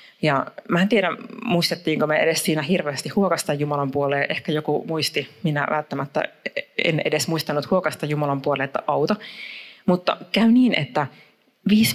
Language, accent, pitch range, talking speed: Finnish, native, 150-195 Hz, 145 wpm